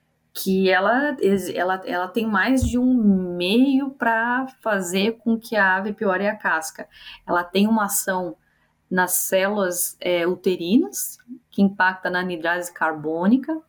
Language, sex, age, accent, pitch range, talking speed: Portuguese, female, 20-39, Brazilian, 160-200 Hz, 125 wpm